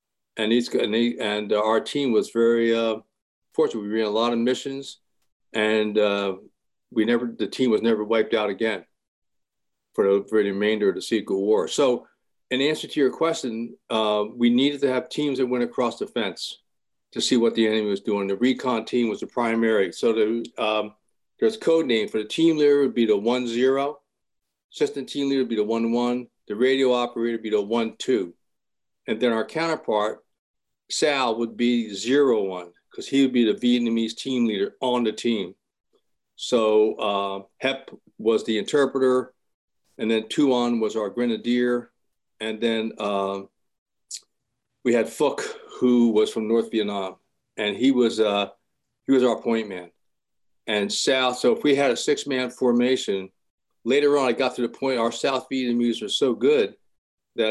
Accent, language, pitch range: American, English, 110-125 Hz